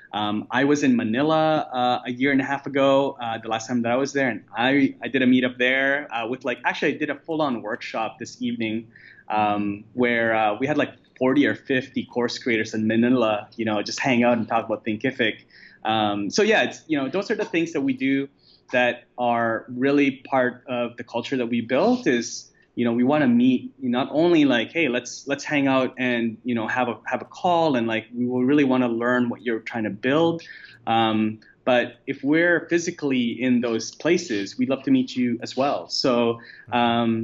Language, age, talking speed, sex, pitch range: English, 20-39, 220 wpm, male, 115-140 Hz